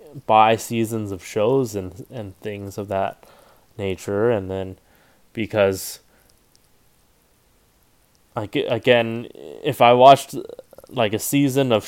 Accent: American